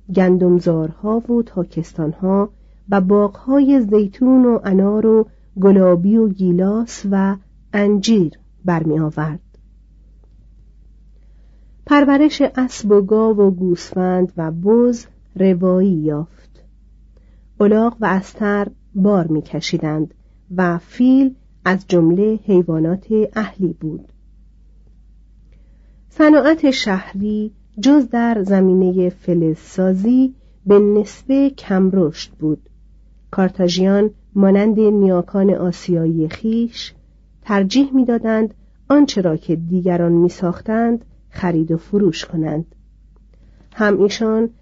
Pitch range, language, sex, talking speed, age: 175-220 Hz, Persian, female, 90 wpm, 40-59